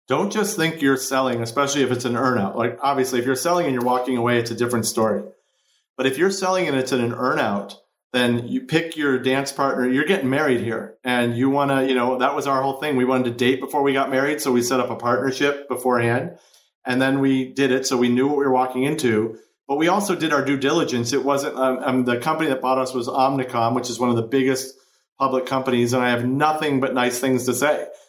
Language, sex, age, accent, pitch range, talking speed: English, male, 40-59, American, 125-135 Hz, 250 wpm